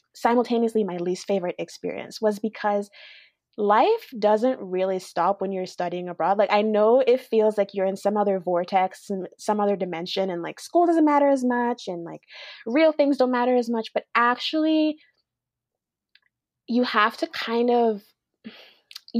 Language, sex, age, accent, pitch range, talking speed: English, female, 20-39, American, 190-255 Hz, 165 wpm